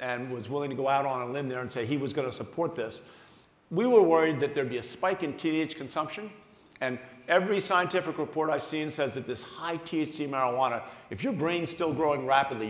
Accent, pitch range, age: American, 135-180 Hz, 50-69